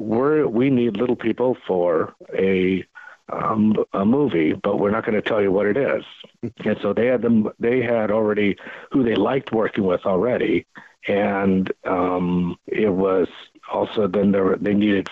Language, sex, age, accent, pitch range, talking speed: English, male, 50-69, American, 95-115 Hz, 170 wpm